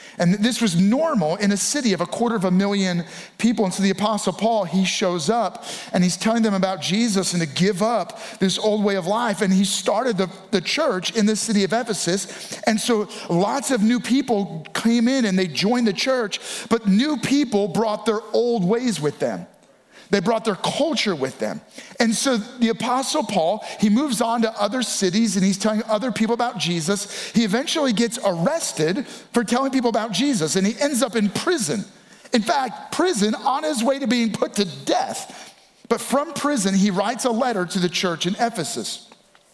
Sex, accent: male, American